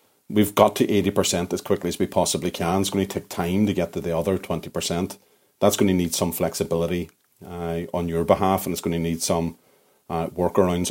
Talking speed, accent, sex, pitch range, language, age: 215 wpm, Irish, male, 85-100 Hz, English, 40-59